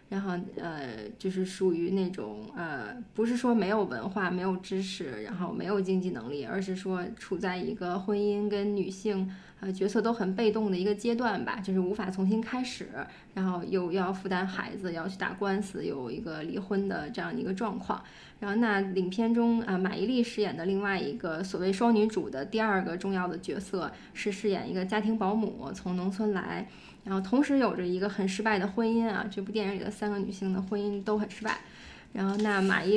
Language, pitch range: Chinese, 190-215 Hz